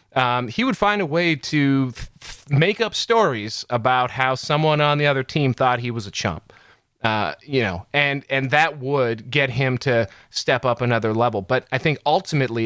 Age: 30-49